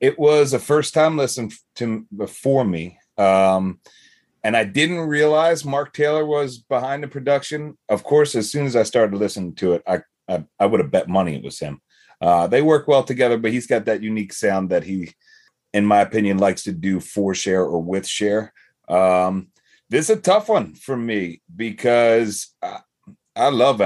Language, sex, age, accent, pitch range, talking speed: English, male, 30-49, American, 105-150 Hz, 190 wpm